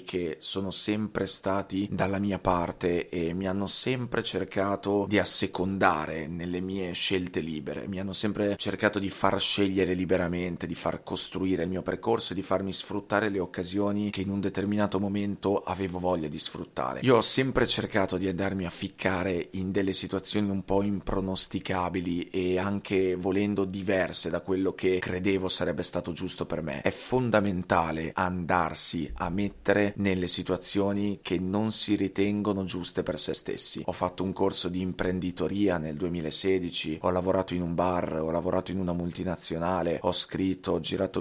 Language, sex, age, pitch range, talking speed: Italian, male, 30-49, 90-100 Hz, 160 wpm